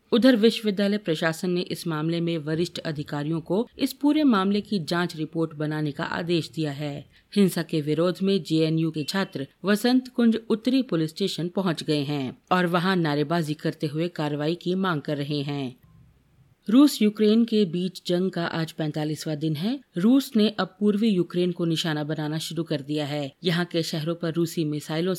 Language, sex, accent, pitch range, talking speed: Hindi, female, native, 155-190 Hz, 180 wpm